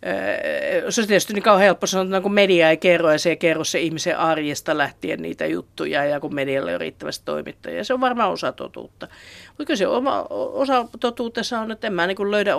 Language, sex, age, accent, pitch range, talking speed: Finnish, female, 50-69, native, 155-185 Hz, 195 wpm